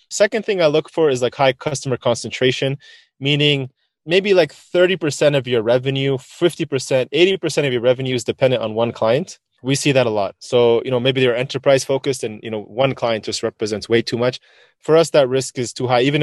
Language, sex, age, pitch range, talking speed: English, male, 20-39, 120-150 Hz, 210 wpm